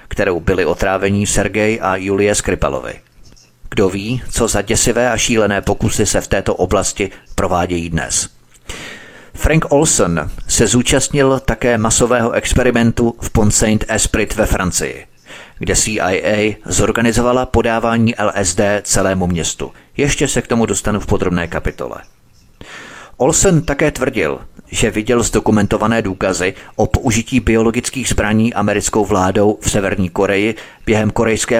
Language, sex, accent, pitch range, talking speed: Czech, male, native, 100-115 Hz, 125 wpm